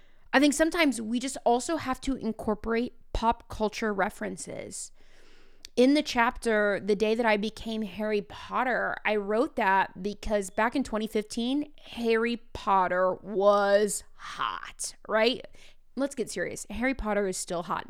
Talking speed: 140 wpm